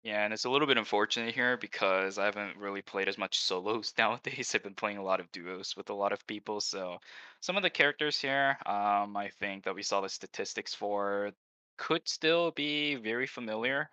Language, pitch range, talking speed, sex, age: English, 95-120 Hz, 210 wpm, male, 10-29